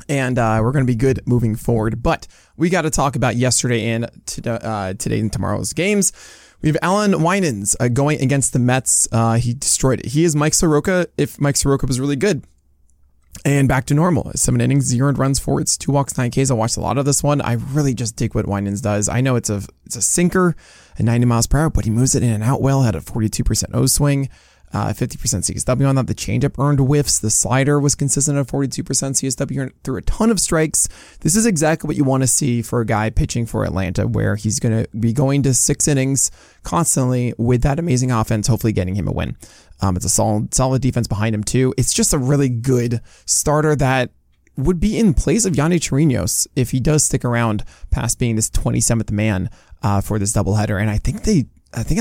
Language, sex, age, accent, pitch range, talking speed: English, male, 20-39, American, 110-140 Hz, 225 wpm